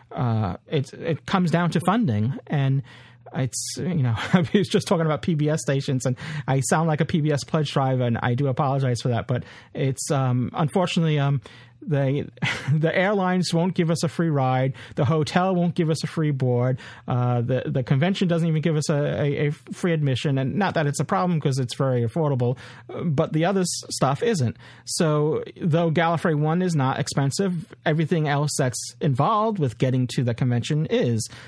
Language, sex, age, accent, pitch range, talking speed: English, male, 30-49, American, 130-170 Hz, 185 wpm